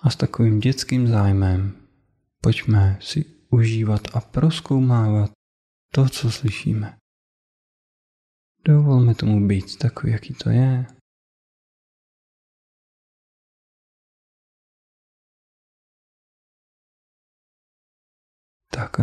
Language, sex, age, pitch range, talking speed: Czech, male, 20-39, 100-120 Hz, 65 wpm